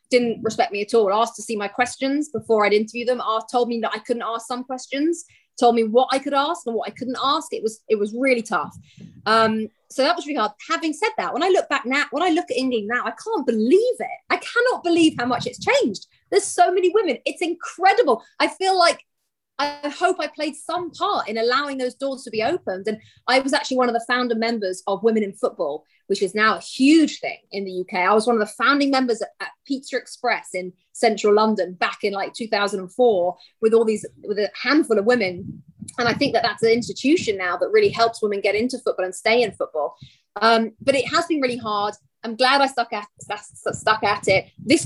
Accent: British